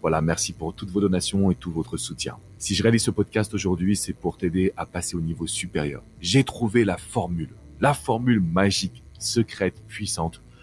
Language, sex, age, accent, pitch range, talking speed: French, male, 40-59, French, 85-110 Hz, 185 wpm